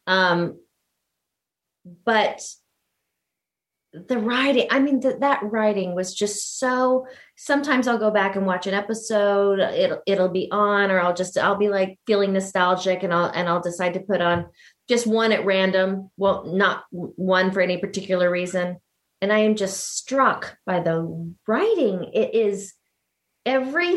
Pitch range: 185-240 Hz